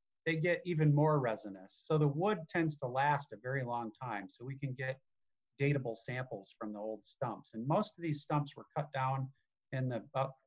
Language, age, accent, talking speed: English, 40-59, American, 205 wpm